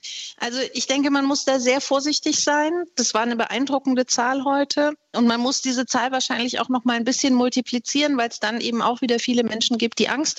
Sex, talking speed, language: female, 220 wpm, German